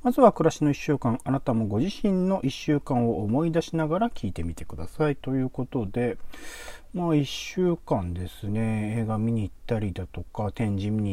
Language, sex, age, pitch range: Japanese, male, 40-59, 95-155 Hz